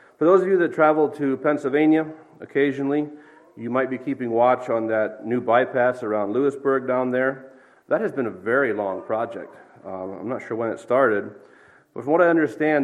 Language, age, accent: English, 40-59, American